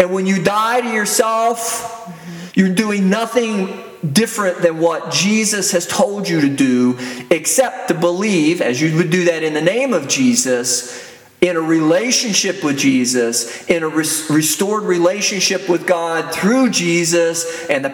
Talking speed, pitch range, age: 155 wpm, 170-250 Hz, 40-59